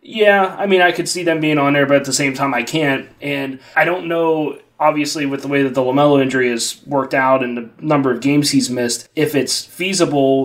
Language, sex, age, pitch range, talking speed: English, male, 20-39, 130-145 Hz, 240 wpm